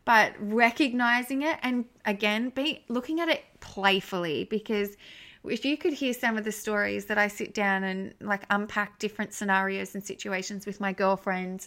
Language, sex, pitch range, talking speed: English, female, 200-255 Hz, 170 wpm